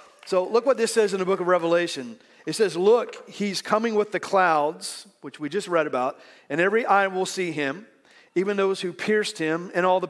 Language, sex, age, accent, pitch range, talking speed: English, male, 40-59, American, 160-200 Hz, 220 wpm